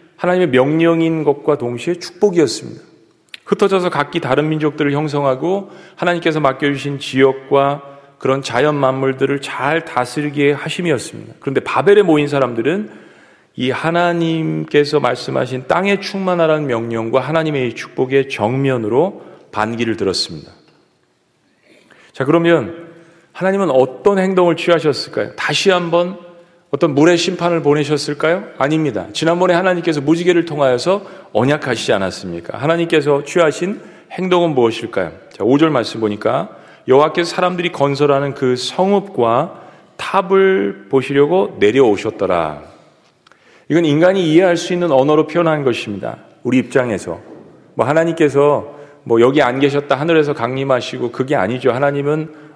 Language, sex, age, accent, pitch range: Korean, male, 40-59, native, 135-175 Hz